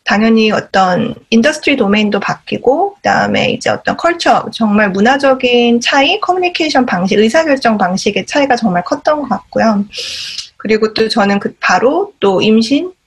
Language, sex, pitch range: Korean, female, 220-285 Hz